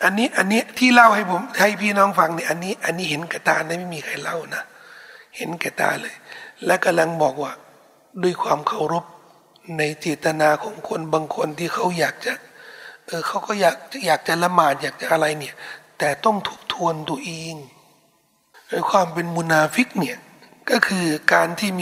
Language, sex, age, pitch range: Thai, male, 60-79, 160-210 Hz